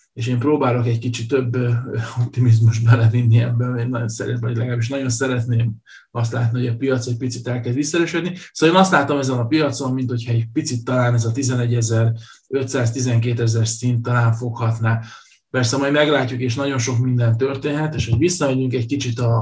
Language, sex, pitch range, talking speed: Hungarian, male, 120-140 Hz, 170 wpm